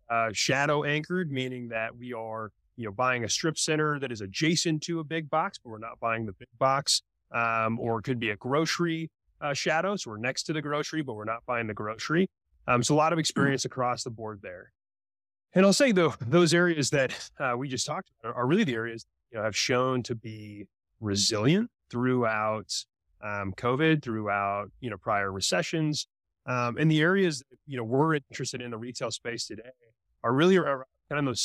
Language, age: English, 30-49